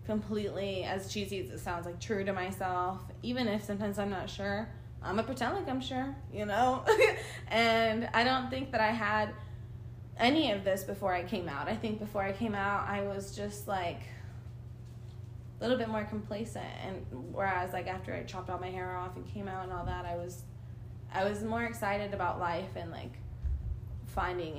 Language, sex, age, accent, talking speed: English, female, 20-39, American, 195 wpm